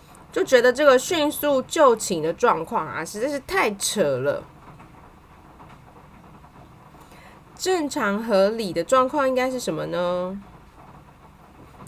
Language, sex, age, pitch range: Chinese, female, 20-39, 180-260 Hz